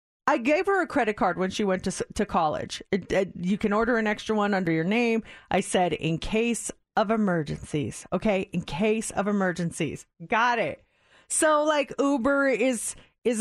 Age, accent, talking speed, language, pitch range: 40-59, American, 185 wpm, English, 195-310 Hz